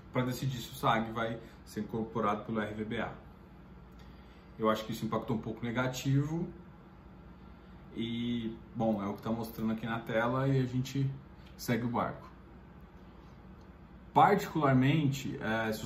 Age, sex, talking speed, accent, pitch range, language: 20-39, male, 140 wpm, Brazilian, 110-135 Hz, Portuguese